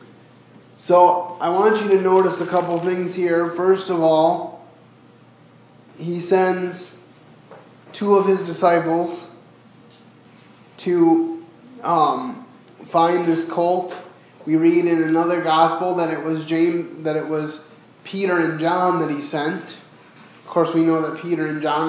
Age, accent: 20-39, American